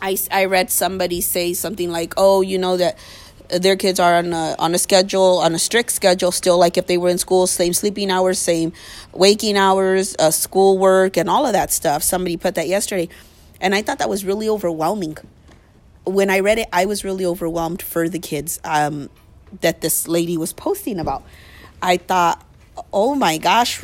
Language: English